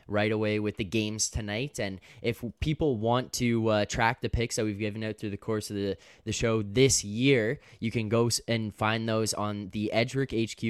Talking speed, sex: 215 wpm, male